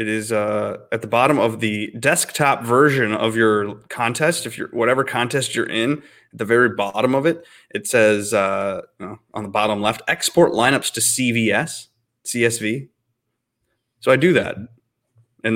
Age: 20-39